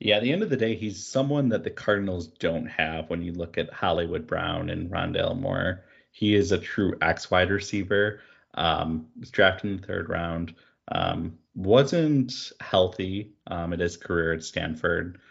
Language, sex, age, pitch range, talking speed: English, male, 30-49, 85-110 Hz, 180 wpm